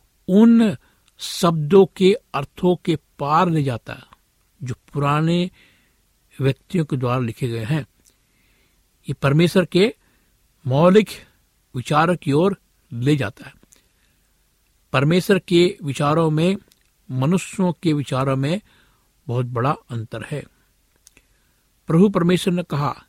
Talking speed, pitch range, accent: 110 wpm, 125-175 Hz, native